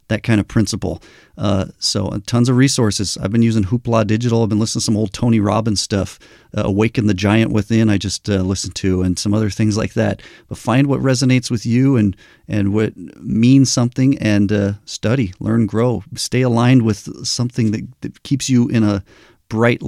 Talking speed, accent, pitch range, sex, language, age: 200 wpm, American, 105-125 Hz, male, English, 40-59